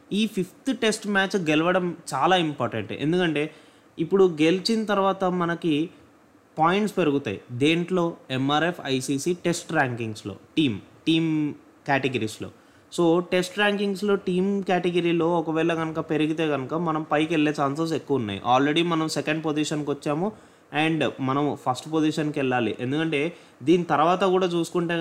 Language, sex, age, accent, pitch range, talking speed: Telugu, male, 20-39, native, 145-185 Hz, 125 wpm